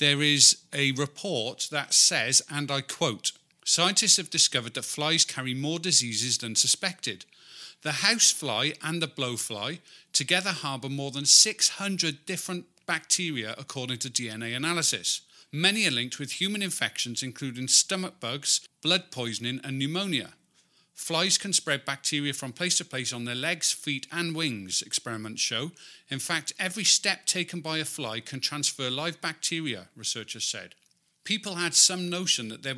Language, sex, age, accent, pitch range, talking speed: English, male, 40-59, British, 120-160 Hz, 155 wpm